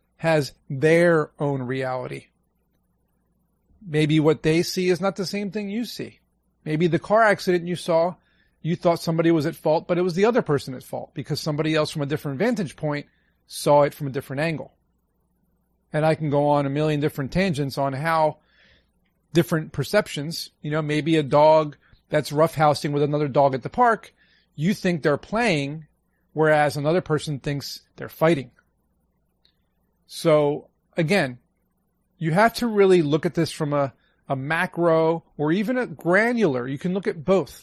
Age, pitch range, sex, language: 40-59, 145-180 Hz, male, English